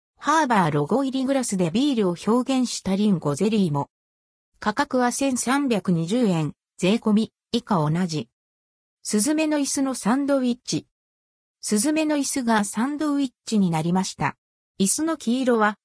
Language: Japanese